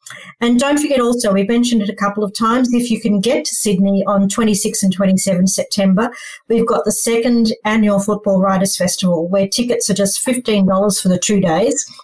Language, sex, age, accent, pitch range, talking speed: English, female, 40-59, Australian, 195-230 Hz, 190 wpm